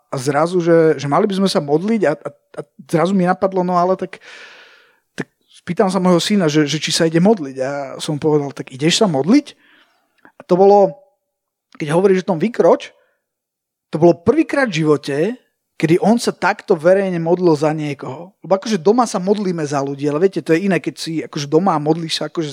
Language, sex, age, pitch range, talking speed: Slovak, male, 30-49, 160-200 Hz, 210 wpm